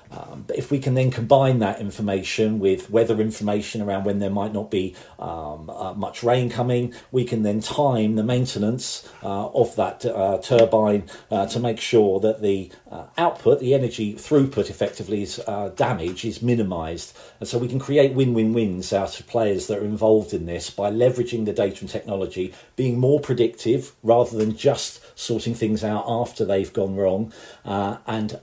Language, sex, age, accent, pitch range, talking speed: English, male, 40-59, British, 100-120 Hz, 180 wpm